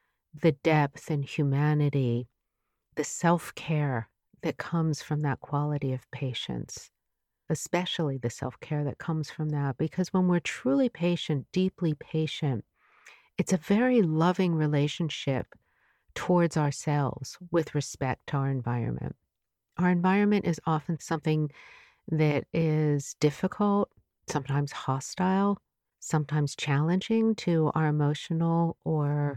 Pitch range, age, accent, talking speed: 145-170 Hz, 50-69, American, 110 wpm